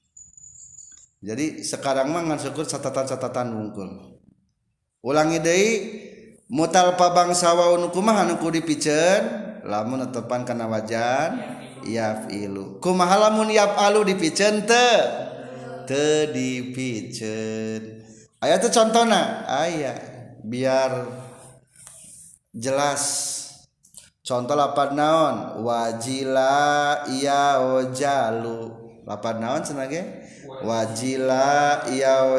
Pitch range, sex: 130-175 Hz, male